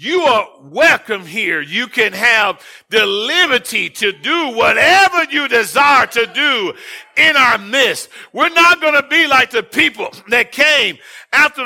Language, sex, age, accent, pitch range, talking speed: English, male, 50-69, American, 245-340 Hz, 155 wpm